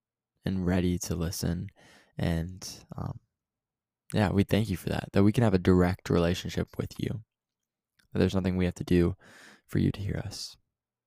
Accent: American